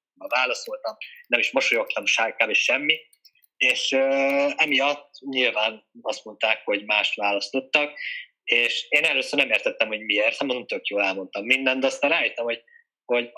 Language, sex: Hungarian, male